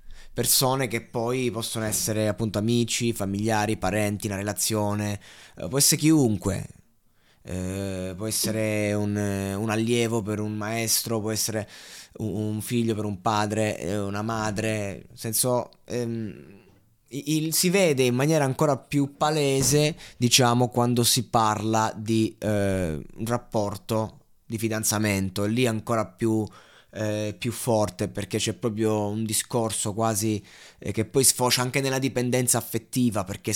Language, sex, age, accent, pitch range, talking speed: Italian, male, 20-39, native, 105-125 Hz, 130 wpm